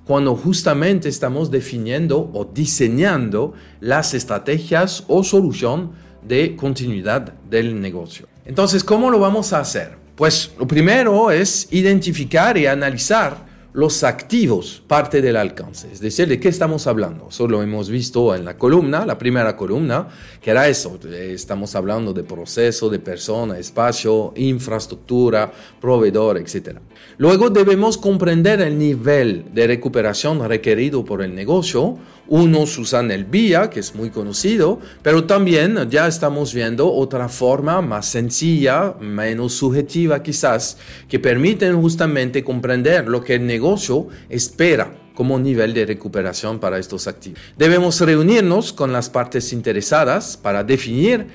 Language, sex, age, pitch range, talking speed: Spanish, male, 40-59, 115-160 Hz, 135 wpm